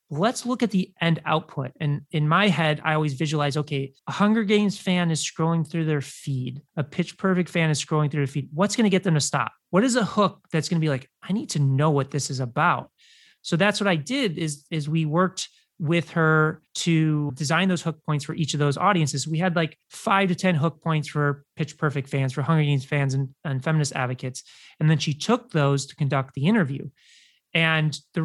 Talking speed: 230 wpm